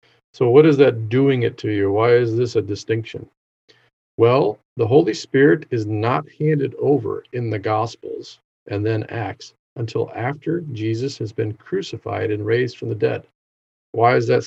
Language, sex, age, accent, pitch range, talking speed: English, male, 50-69, American, 110-145 Hz, 170 wpm